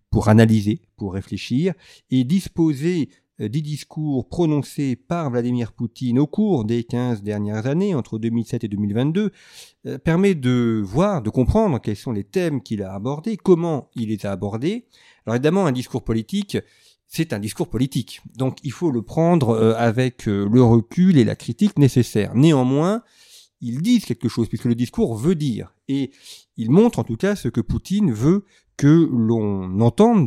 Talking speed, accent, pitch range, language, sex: 165 wpm, French, 115-160 Hz, French, male